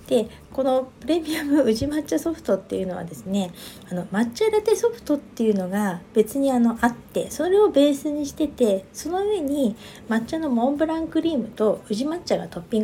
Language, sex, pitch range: Japanese, female, 195-270 Hz